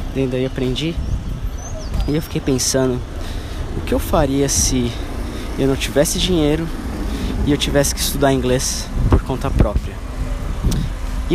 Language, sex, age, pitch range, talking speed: Portuguese, male, 20-39, 90-125 Hz, 135 wpm